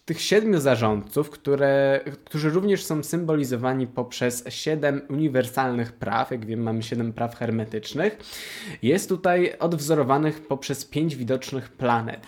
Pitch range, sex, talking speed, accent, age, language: 120-155 Hz, male, 120 wpm, native, 20-39, Polish